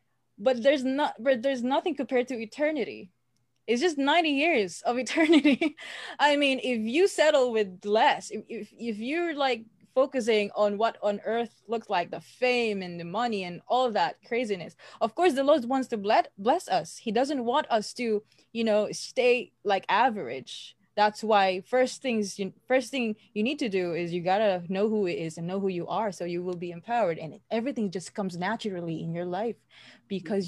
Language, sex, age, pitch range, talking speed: English, female, 20-39, 200-255 Hz, 200 wpm